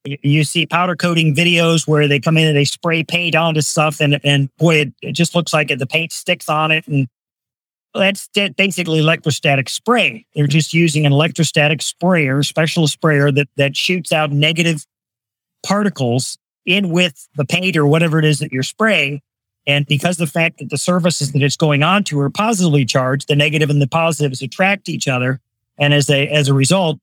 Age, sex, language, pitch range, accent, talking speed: 40-59, male, English, 140-170 Hz, American, 195 wpm